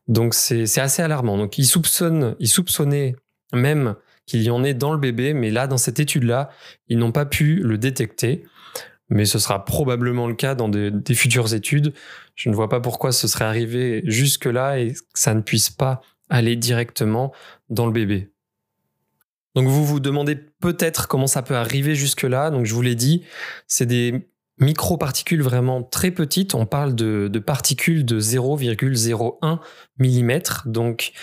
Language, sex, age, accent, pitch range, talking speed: French, male, 20-39, French, 115-140 Hz, 170 wpm